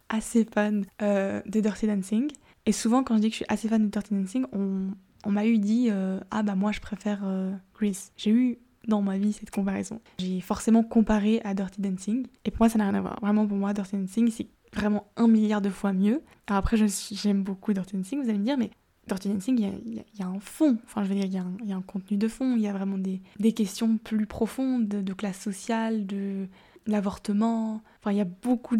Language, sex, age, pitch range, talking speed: French, female, 10-29, 200-225 Hz, 250 wpm